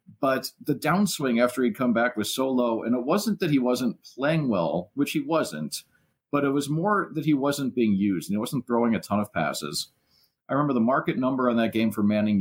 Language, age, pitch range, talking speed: English, 40-59, 105-130 Hz, 230 wpm